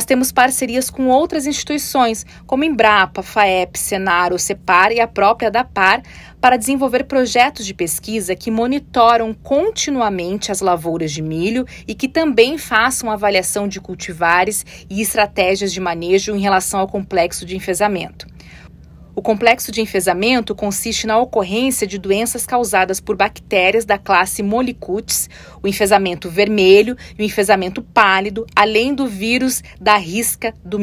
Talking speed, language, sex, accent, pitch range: 140 wpm, Portuguese, female, Brazilian, 190-245 Hz